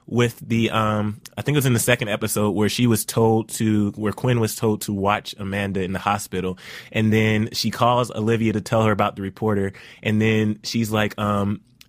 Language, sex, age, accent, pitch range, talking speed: English, male, 20-39, American, 100-115 Hz, 210 wpm